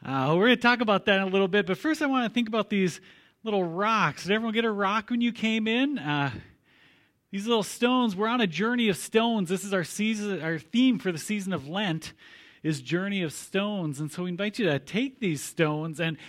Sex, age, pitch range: male, 40-59, 145-200 Hz